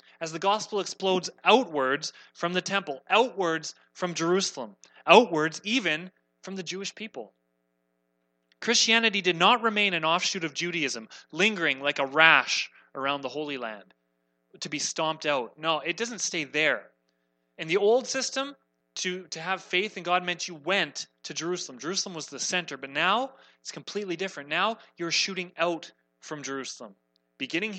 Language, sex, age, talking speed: English, male, 30-49, 160 wpm